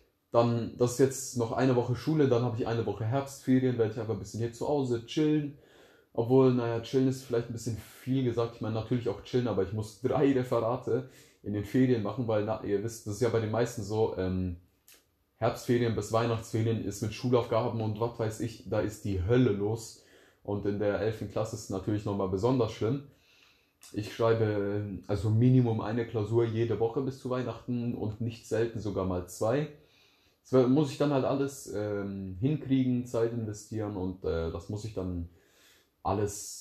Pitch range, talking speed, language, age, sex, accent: 95-120 Hz, 190 wpm, German, 20-39, male, German